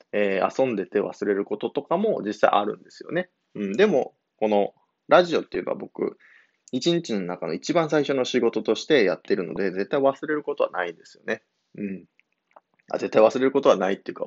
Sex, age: male, 20-39